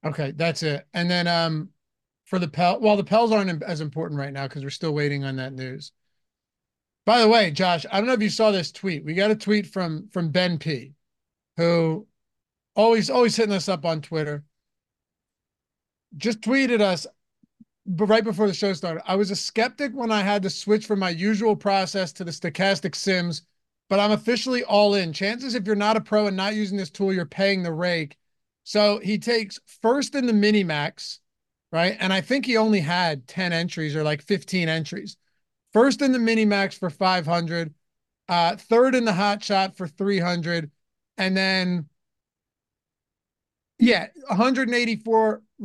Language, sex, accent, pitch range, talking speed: English, male, American, 170-210 Hz, 180 wpm